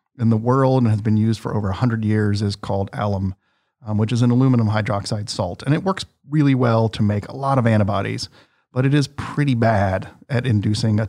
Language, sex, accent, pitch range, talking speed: English, male, American, 105-125 Hz, 215 wpm